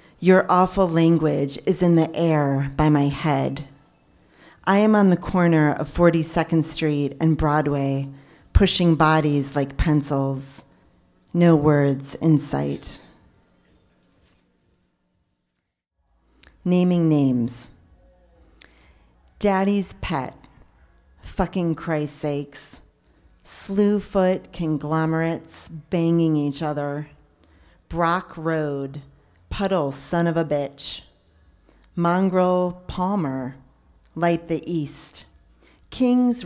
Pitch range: 130-170 Hz